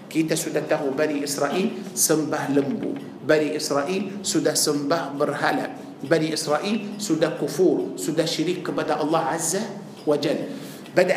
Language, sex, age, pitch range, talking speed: Malay, male, 50-69, 170-220 Hz, 125 wpm